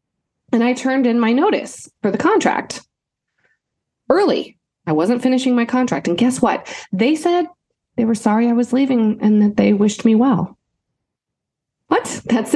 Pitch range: 200-290 Hz